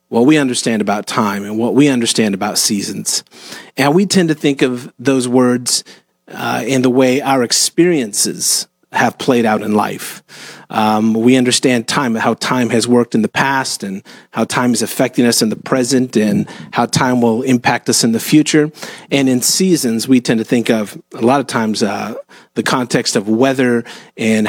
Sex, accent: male, American